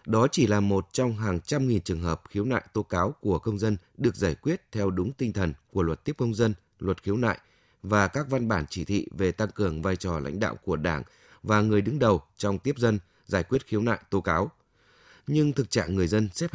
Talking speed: 240 wpm